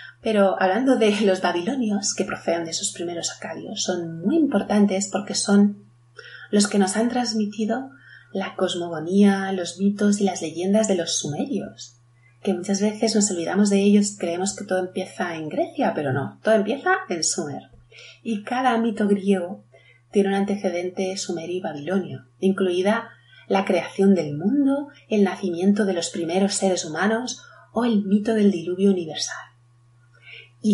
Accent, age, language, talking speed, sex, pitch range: Spanish, 30-49, Spanish, 150 wpm, female, 175-215 Hz